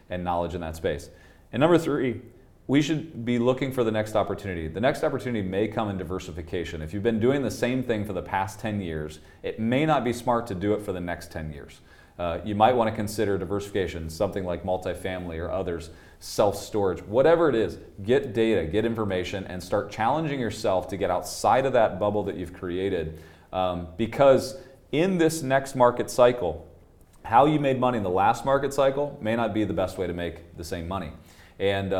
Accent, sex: American, male